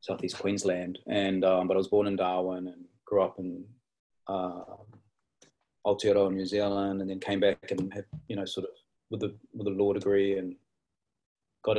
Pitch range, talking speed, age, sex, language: 95-105 Hz, 185 wpm, 30-49, male, English